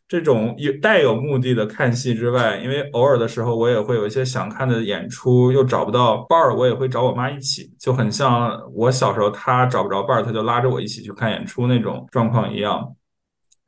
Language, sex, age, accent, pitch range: Chinese, male, 20-39, native, 110-130 Hz